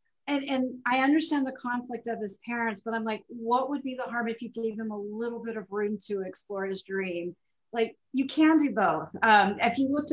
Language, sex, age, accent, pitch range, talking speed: English, female, 40-59, American, 195-235 Hz, 230 wpm